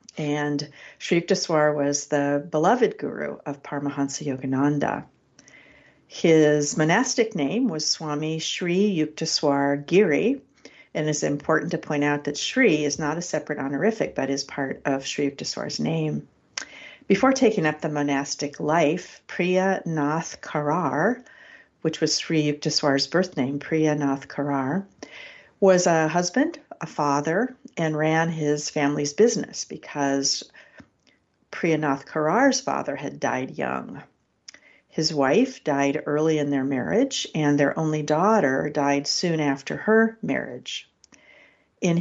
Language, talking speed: English, 130 wpm